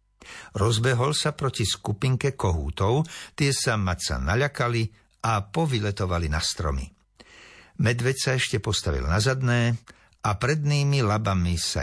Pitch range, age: 85-125 Hz, 60-79